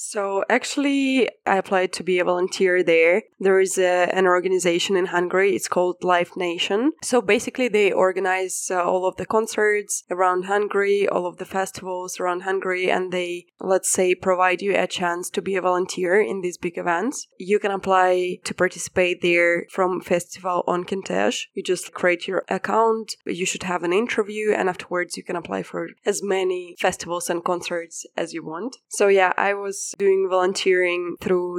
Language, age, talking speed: English, 20-39, 175 wpm